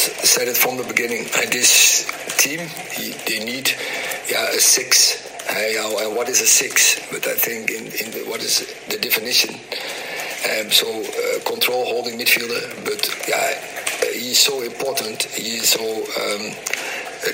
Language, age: English, 50-69